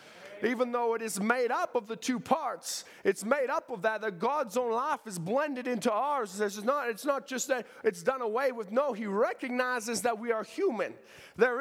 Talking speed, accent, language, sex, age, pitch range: 210 wpm, American, English, male, 30-49, 215-265 Hz